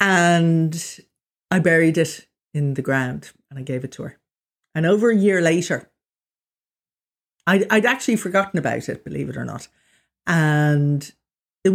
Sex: female